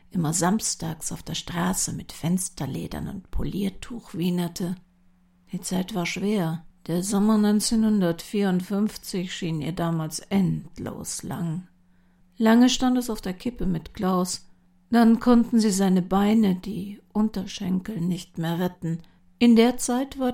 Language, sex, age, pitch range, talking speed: German, female, 50-69, 165-215 Hz, 130 wpm